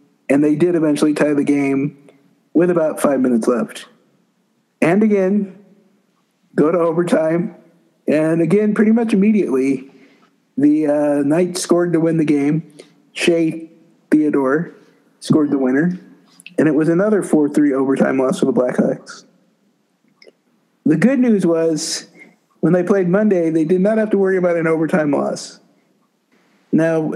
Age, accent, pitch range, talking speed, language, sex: 50-69, American, 150-195 Hz, 140 wpm, English, male